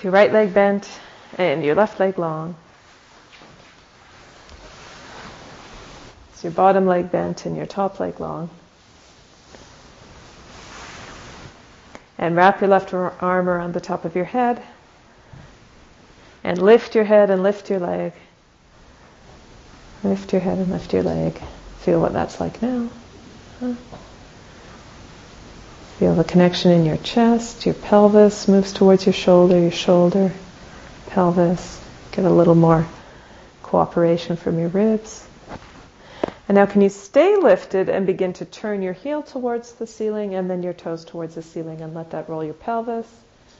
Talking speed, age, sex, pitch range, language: 140 wpm, 40-59, female, 165-205 Hz, English